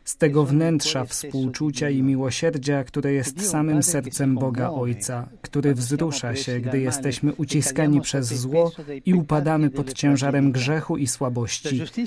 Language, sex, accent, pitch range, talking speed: Polish, male, native, 130-155 Hz, 135 wpm